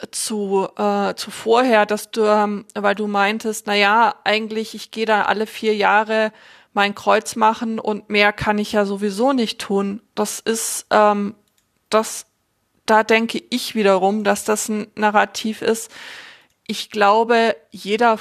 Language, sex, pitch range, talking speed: German, female, 205-225 Hz, 150 wpm